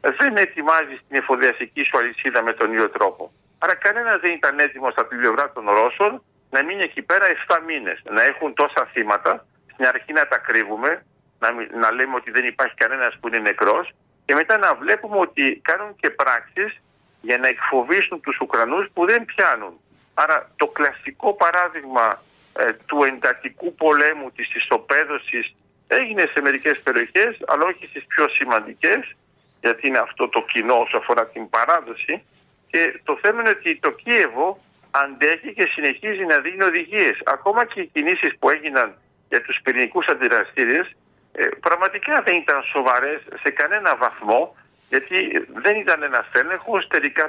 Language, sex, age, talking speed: Greek, male, 50-69, 155 wpm